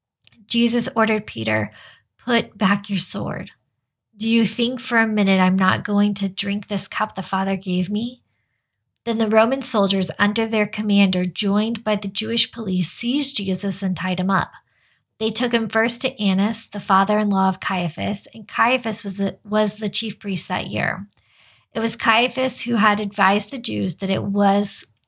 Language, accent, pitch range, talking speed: English, American, 190-225 Hz, 170 wpm